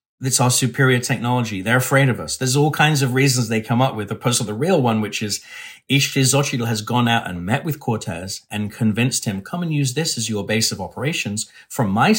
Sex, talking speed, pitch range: male, 225 wpm, 105-130 Hz